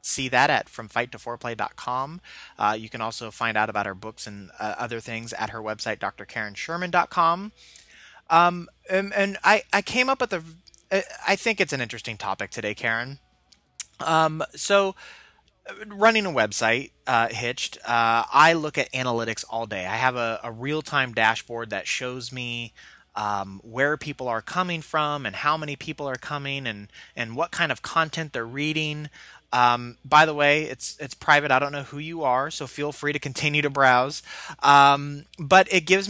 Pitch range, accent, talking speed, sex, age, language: 115-155 Hz, American, 185 wpm, male, 30-49, English